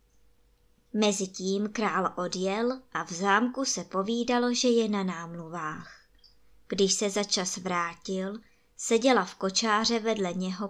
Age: 20-39